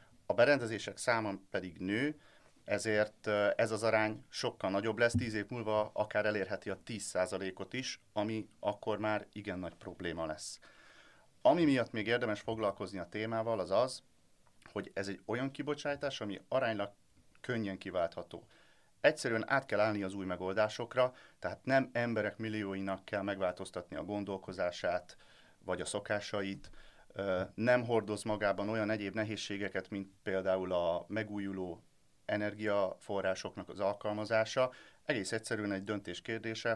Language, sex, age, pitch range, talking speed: Hungarian, male, 30-49, 95-115 Hz, 130 wpm